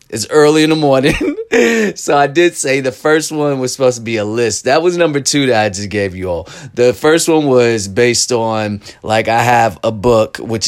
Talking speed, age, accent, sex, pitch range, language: 225 wpm, 30-49, American, male, 110-135 Hz, English